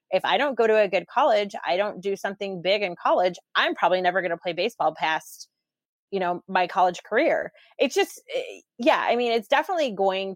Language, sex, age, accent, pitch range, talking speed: English, female, 30-49, American, 180-230 Hz, 210 wpm